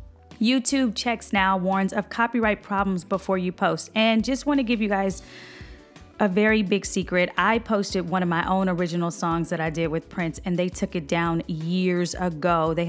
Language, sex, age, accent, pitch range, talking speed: English, female, 30-49, American, 180-220 Hz, 190 wpm